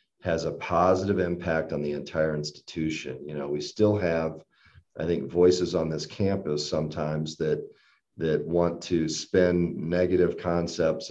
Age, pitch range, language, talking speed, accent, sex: 40-59, 75-85 Hz, English, 145 wpm, American, male